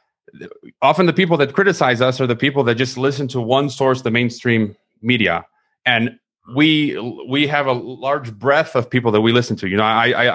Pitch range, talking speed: 115-140 Hz, 205 wpm